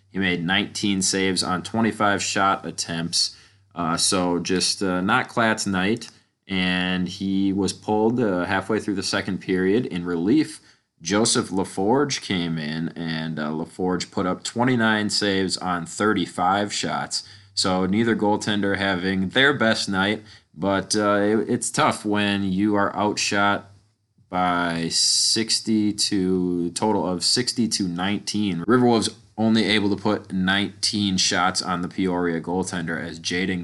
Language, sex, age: English, male, 20-39